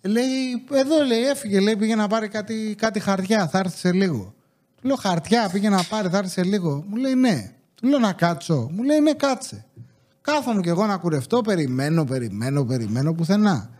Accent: Greek